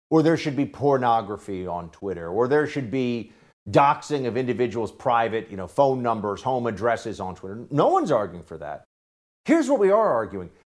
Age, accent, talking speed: 50-69, American, 185 wpm